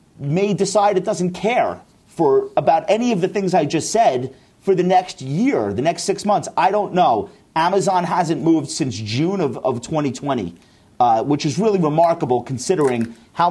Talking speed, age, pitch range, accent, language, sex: 180 wpm, 40-59, 135-195 Hz, American, English, male